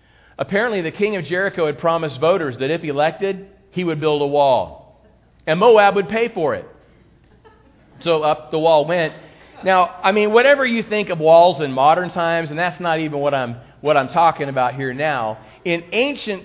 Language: English